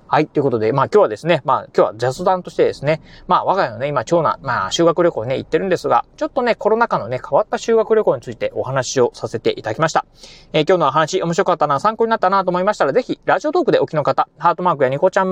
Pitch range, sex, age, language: 155-215 Hz, male, 30-49, Japanese